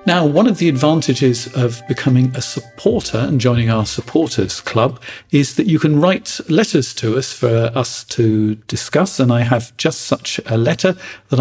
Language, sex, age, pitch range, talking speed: English, male, 50-69, 115-140 Hz, 180 wpm